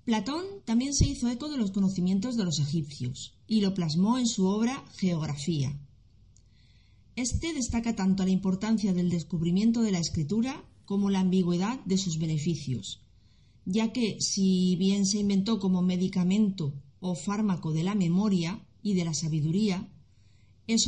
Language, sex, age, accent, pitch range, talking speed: Spanish, female, 30-49, Spanish, 150-220 Hz, 150 wpm